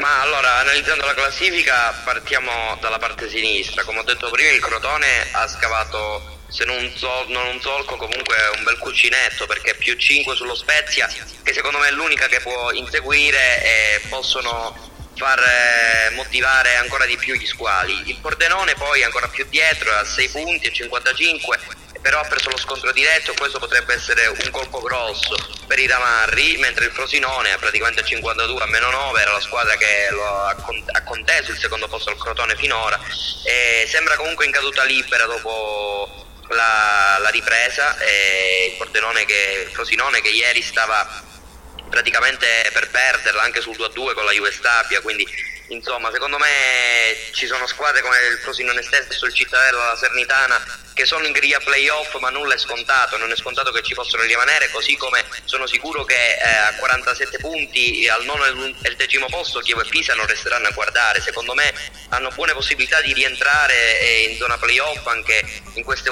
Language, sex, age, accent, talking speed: Italian, male, 30-49, native, 180 wpm